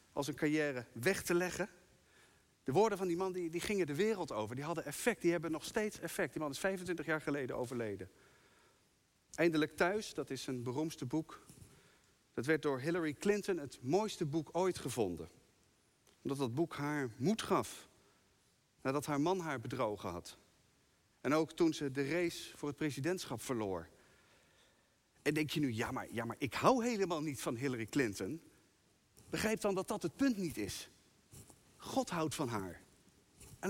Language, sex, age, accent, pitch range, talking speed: Dutch, male, 50-69, Dutch, 130-180 Hz, 170 wpm